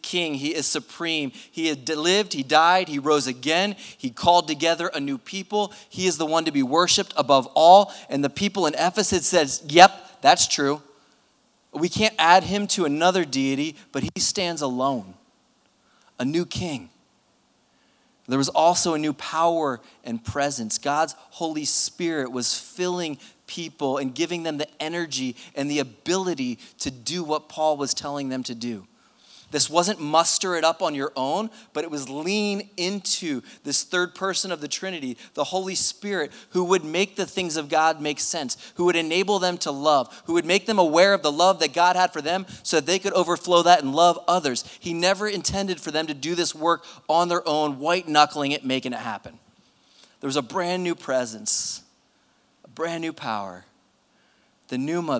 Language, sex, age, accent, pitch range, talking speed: English, male, 20-39, American, 145-180 Hz, 185 wpm